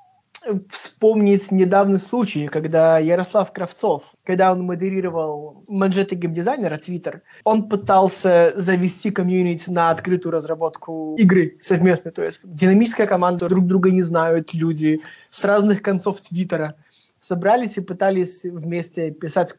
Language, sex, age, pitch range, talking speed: Russian, male, 20-39, 165-195 Hz, 120 wpm